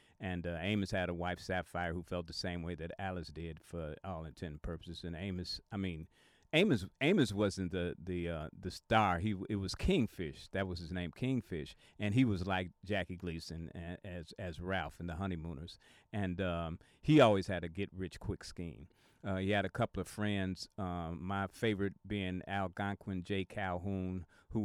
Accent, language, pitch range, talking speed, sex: American, English, 85-100 Hz, 185 wpm, male